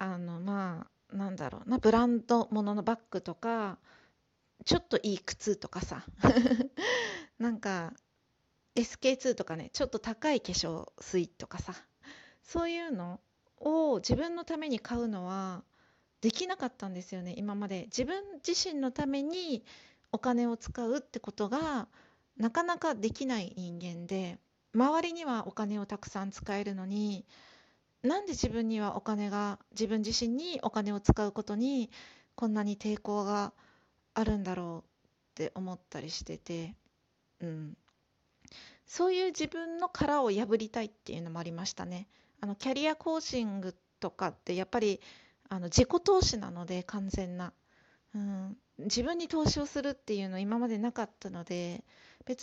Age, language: 40-59, Japanese